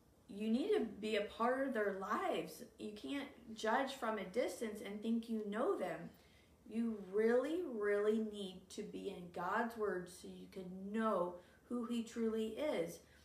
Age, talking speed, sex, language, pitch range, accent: 30-49, 170 wpm, female, English, 200-250 Hz, American